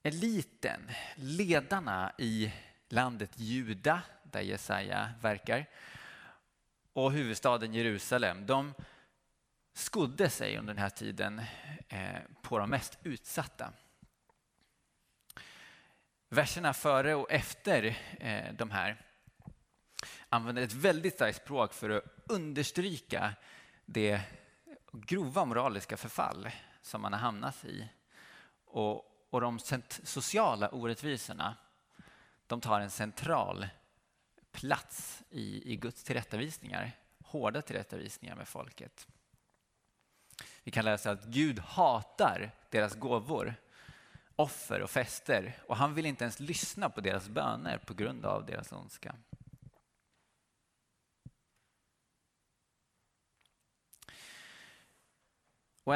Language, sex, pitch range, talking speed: Swedish, male, 110-150 Hz, 95 wpm